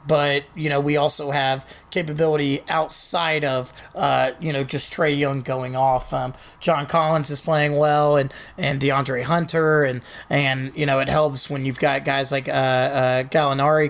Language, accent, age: English, American, 30-49